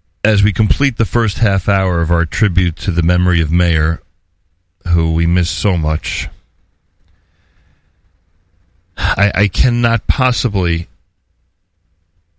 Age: 40-59